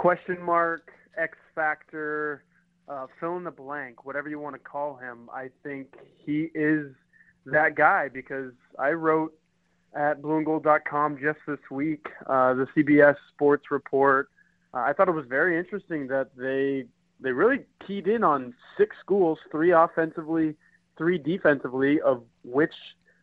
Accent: American